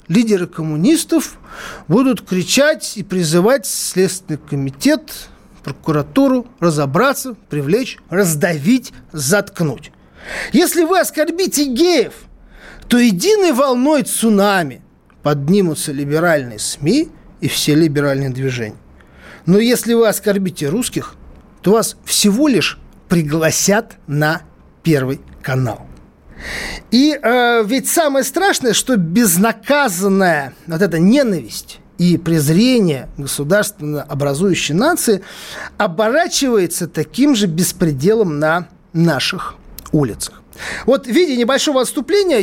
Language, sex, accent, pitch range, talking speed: Russian, male, native, 165-260 Hz, 95 wpm